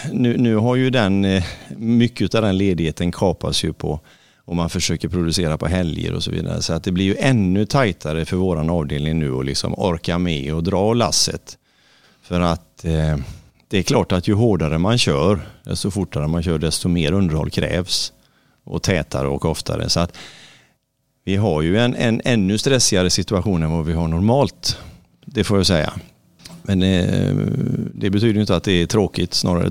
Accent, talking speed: native, 180 wpm